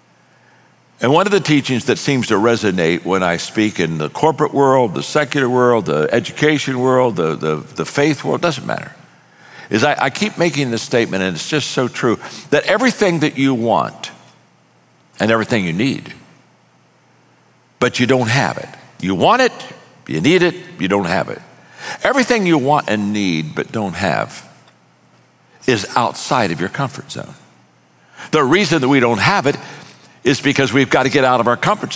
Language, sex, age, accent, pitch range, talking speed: English, male, 60-79, American, 120-165 Hz, 180 wpm